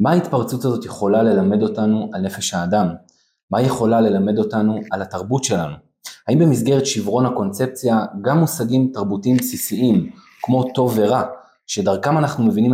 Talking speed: 140 wpm